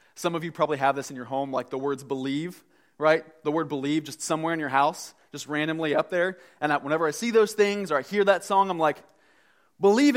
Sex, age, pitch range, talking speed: male, 20-39, 135-180 Hz, 240 wpm